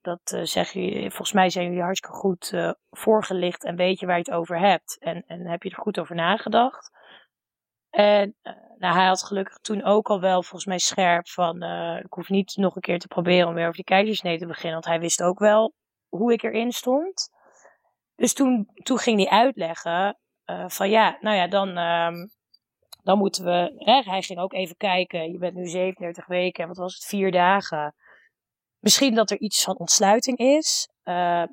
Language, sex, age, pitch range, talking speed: Dutch, female, 20-39, 170-205 Hz, 205 wpm